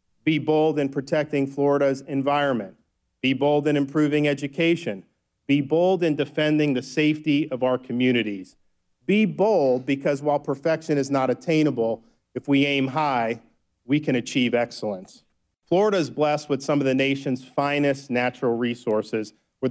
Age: 40-59